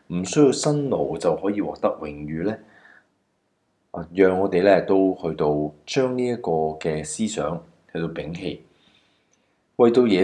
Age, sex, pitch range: 20-39, male, 80-110 Hz